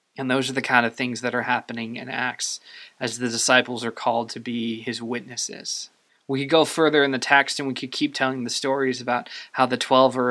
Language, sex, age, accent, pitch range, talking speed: English, male, 20-39, American, 120-135 Hz, 235 wpm